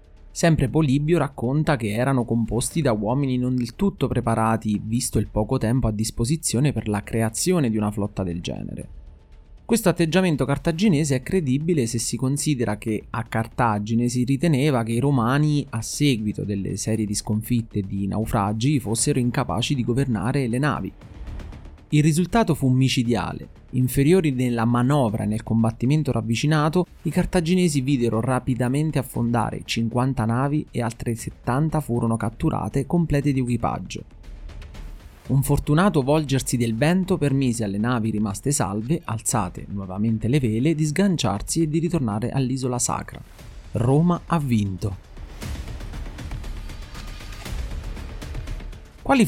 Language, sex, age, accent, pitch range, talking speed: Italian, male, 30-49, native, 110-145 Hz, 130 wpm